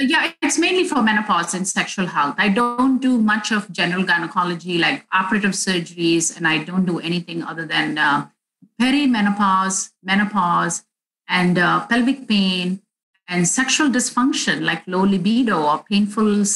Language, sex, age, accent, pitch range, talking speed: English, female, 50-69, Indian, 175-220 Hz, 145 wpm